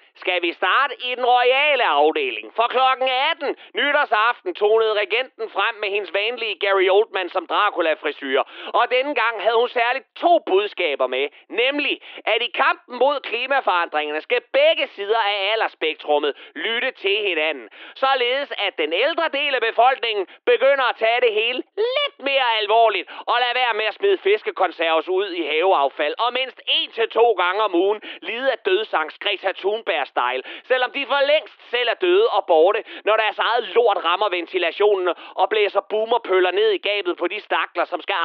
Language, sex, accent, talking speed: Danish, male, native, 170 wpm